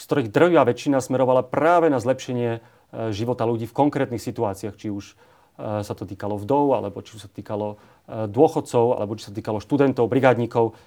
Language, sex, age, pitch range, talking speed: Slovak, male, 30-49, 105-125 Hz, 170 wpm